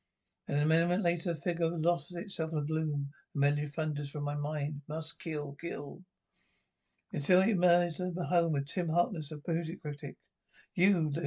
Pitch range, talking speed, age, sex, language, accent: 150-175 Hz, 180 wpm, 60-79, male, English, British